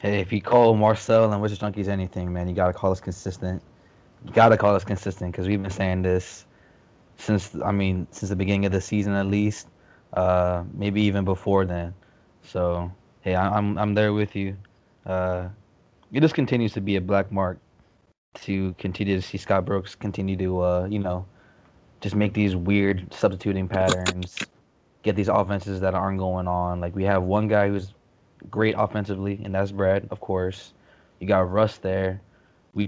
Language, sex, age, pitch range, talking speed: English, male, 20-39, 95-105 Hz, 185 wpm